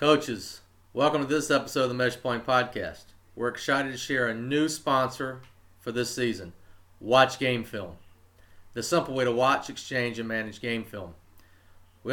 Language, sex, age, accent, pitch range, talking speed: English, male, 40-59, American, 110-145 Hz, 170 wpm